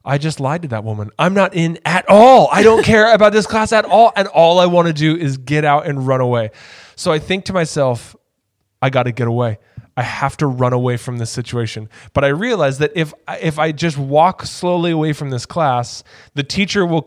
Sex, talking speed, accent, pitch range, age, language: male, 230 wpm, American, 135-175 Hz, 10-29, English